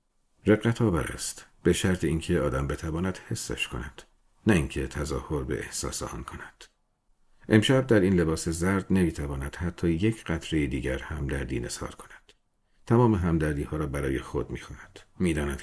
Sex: male